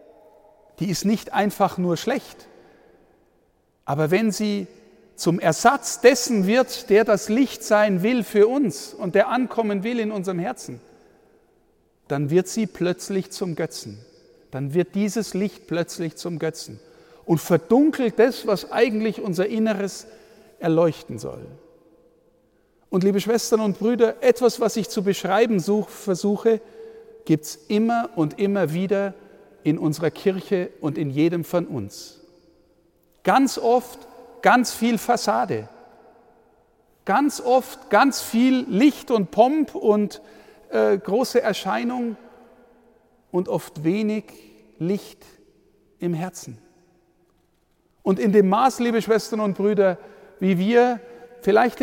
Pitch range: 185-235 Hz